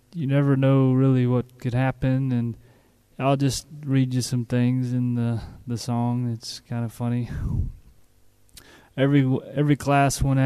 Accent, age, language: American, 20-39, English